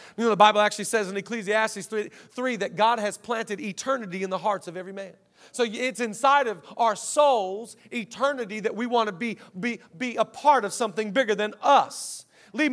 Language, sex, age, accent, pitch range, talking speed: English, male, 40-59, American, 185-235 Hz, 205 wpm